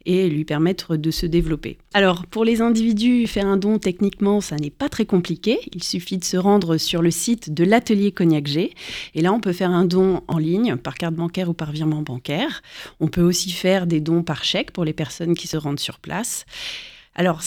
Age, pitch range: 30-49, 160-200 Hz